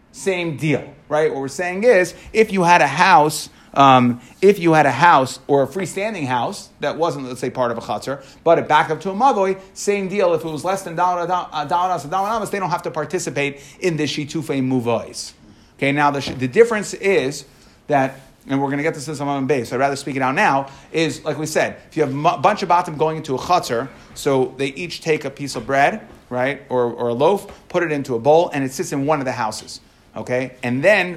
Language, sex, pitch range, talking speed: English, male, 135-175 Hz, 230 wpm